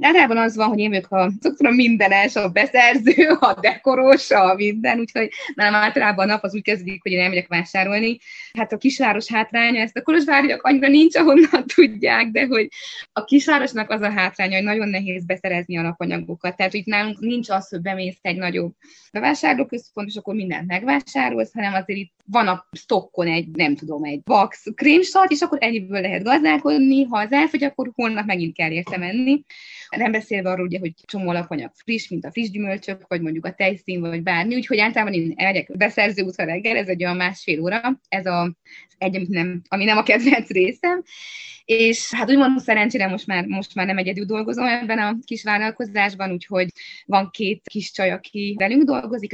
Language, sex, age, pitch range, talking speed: Hungarian, female, 20-39, 185-250 Hz, 185 wpm